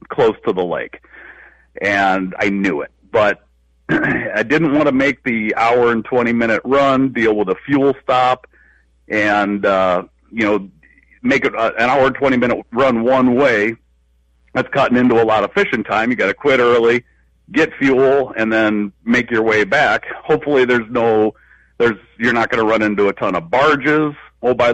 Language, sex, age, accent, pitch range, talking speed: English, male, 50-69, American, 100-135 Hz, 185 wpm